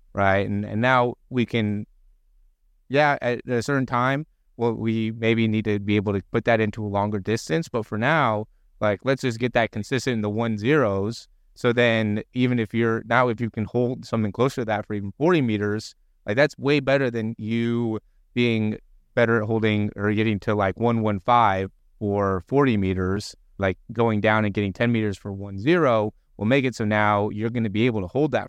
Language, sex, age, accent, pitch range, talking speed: English, male, 30-49, American, 100-125 Hz, 210 wpm